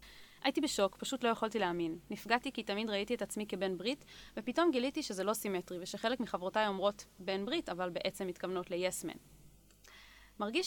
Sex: female